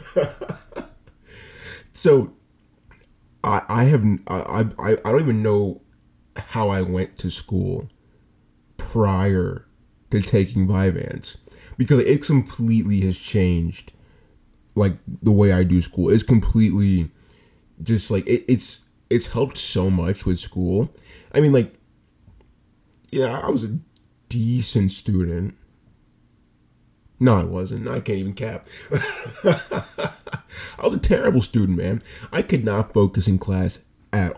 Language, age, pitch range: English, 20-39, 90-110 Hz